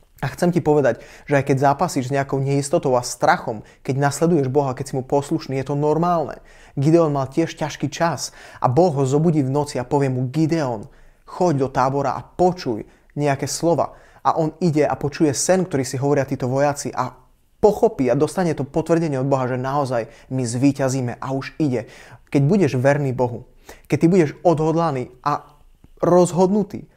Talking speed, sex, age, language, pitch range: 180 wpm, male, 20-39, Slovak, 130-160 Hz